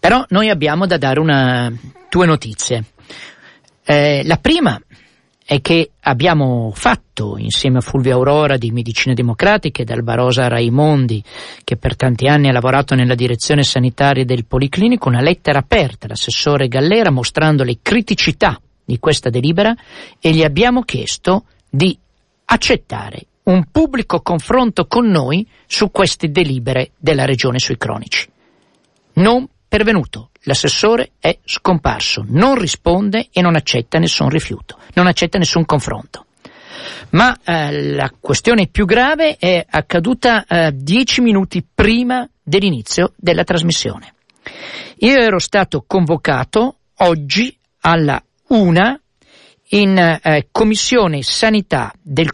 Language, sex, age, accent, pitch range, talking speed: Italian, male, 50-69, native, 130-205 Hz, 125 wpm